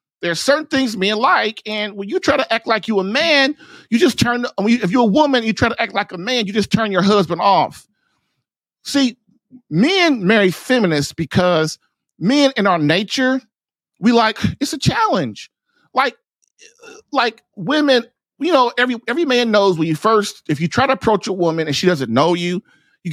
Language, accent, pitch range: English, American, 180-255 Hz